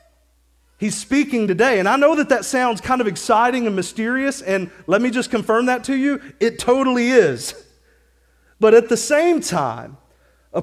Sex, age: male, 30-49